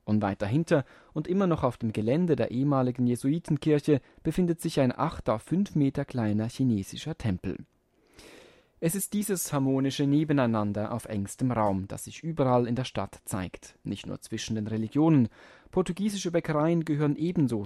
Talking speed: 155 wpm